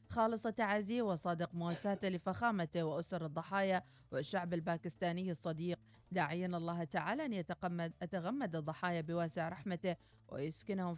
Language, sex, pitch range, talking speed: Arabic, female, 165-200 Hz, 110 wpm